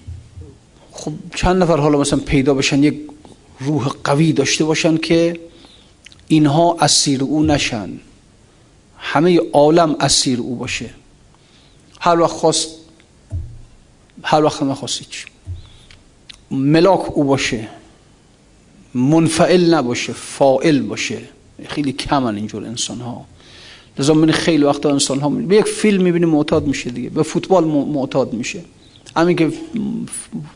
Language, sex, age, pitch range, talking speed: Persian, male, 50-69, 125-160 Hz, 120 wpm